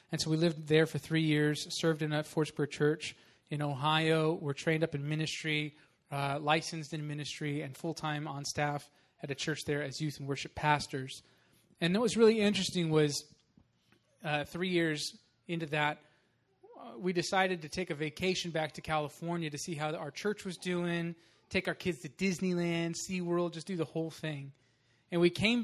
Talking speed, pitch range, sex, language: 185 wpm, 150-180 Hz, male, English